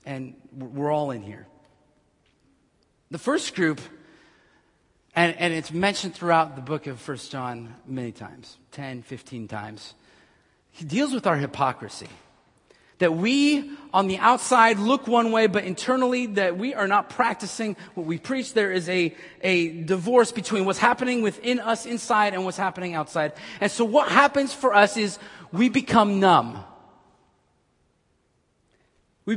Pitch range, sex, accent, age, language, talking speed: 130-205 Hz, male, American, 40-59, English, 145 wpm